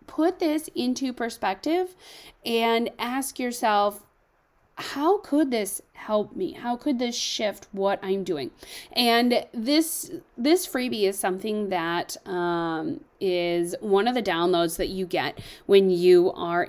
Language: English